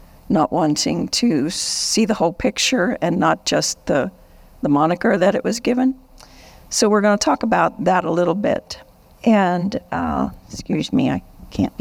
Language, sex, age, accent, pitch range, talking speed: English, female, 50-69, American, 165-195 Hz, 170 wpm